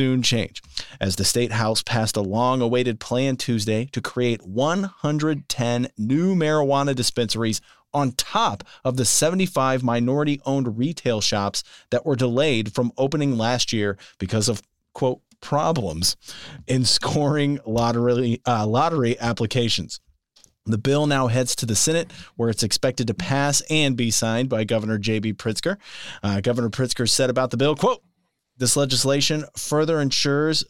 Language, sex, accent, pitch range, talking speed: English, male, American, 110-135 Hz, 145 wpm